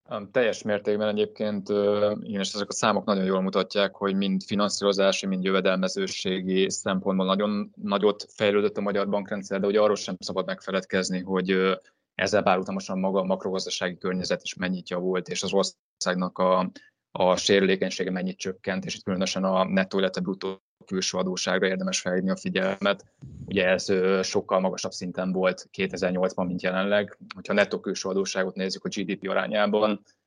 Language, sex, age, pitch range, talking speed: Hungarian, male, 20-39, 95-100 Hz, 155 wpm